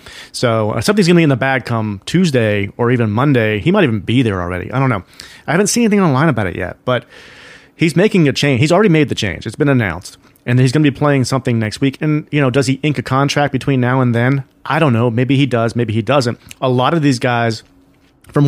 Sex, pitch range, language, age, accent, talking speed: male, 110-135 Hz, English, 30-49, American, 255 wpm